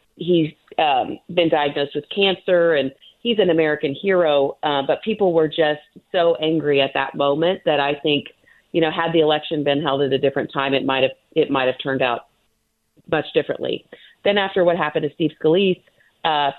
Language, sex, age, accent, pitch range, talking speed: English, female, 40-59, American, 135-165 Hz, 190 wpm